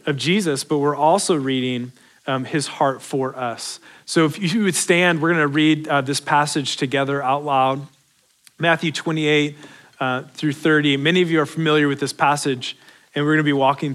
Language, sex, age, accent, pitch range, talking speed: English, male, 30-49, American, 135-155 Hz, 185 wpm